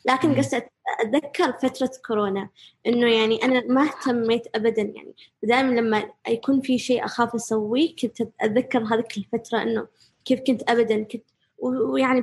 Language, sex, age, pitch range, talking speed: Arabic, female, 20-39, 225-255 Hz, 140 wpm